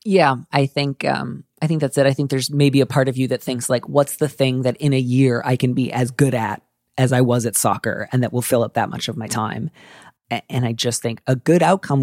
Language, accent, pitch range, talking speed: English, American, 120-140 Hz, 270 wpm